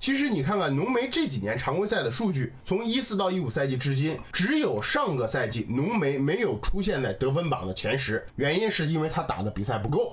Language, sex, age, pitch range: Chinese, male, 20-39, 140-235 Hz